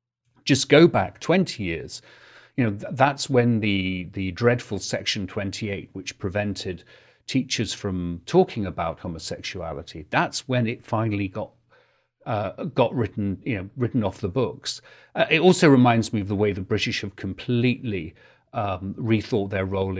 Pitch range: 95-130 Hz